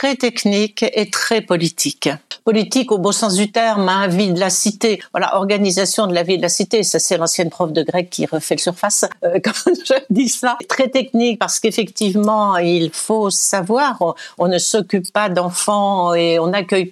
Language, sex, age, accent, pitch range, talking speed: French, female, 60-79, French, 175-220 Hz, 195 wpm